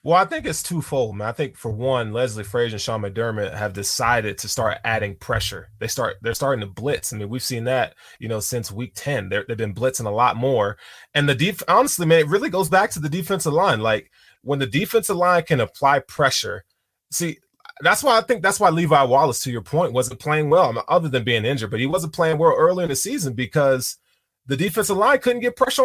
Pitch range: 120-170 Hz